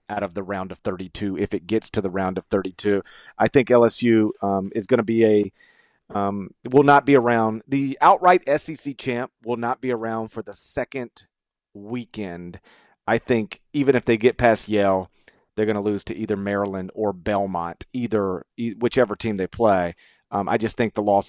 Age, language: 40-59, English